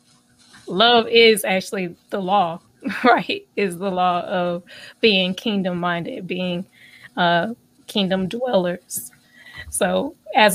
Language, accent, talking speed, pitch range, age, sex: English, American, 110 wpm, 190-225 Hz, 20-39, female